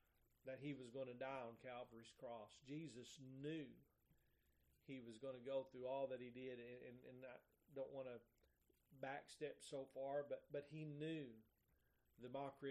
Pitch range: 125-145 Hz